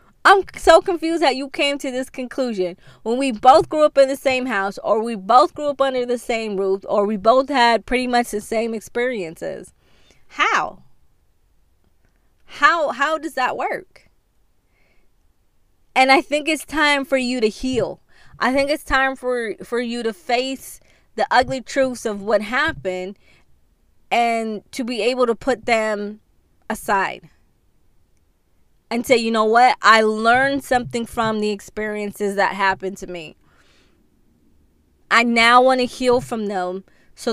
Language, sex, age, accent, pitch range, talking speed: English, female, 20-39, American, 195-260 Hz, 155 wpm